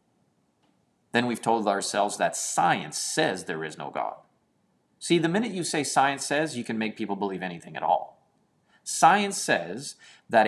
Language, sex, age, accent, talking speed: English, male, 30-49, American, 165 wpm